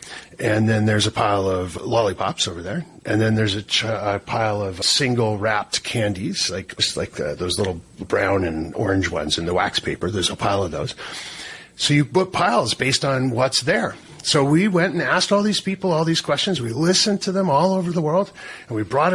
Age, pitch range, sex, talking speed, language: 40-59, 110-160 Hz, male, 210 wpm, English